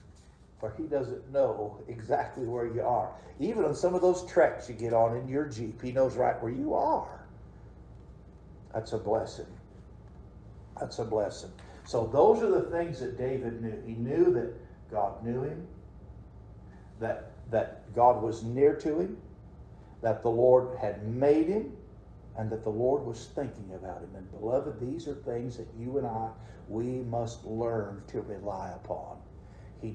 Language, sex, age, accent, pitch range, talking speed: English, male, 50-69, American, 105-130 Hz, 165 wpm